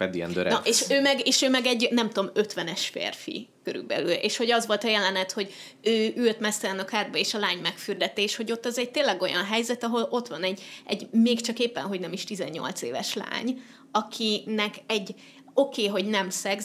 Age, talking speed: 20-39, 205 wpm